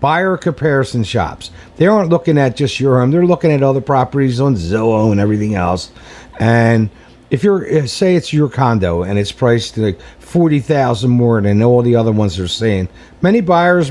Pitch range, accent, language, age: 120-155 Hz, American, English, 50-69